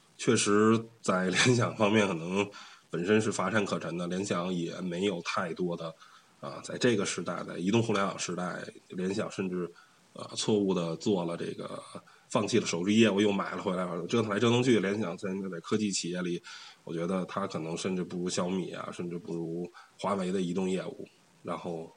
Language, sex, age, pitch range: Chinese, male, 20-39, 90-115 Hz